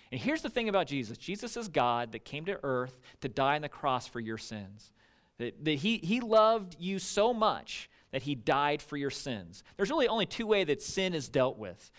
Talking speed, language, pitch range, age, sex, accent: 225 wpm, English, 125-175 Hz, 40-59, male, American